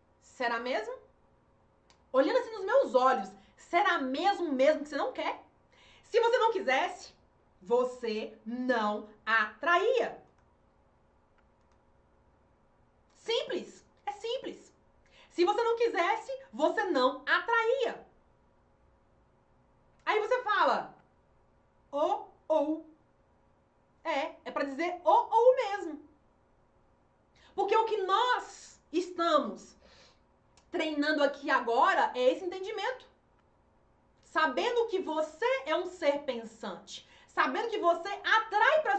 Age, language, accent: 30-49, Portuguese, Brazilian